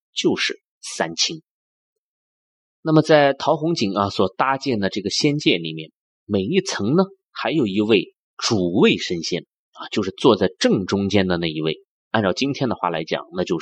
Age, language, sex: 30-49, Chinese, male